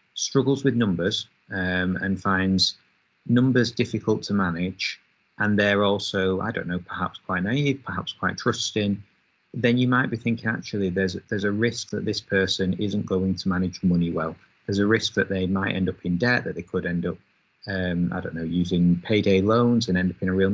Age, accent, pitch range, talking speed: 30-49, British, 95-115 Hz, 200 wpm